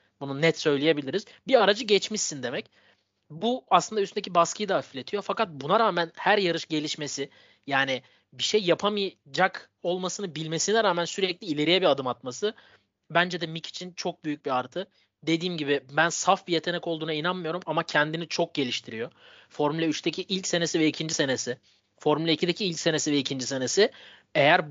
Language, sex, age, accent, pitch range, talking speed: Turkish, male, 30-49, native, 150-180 Hz, 160 wpm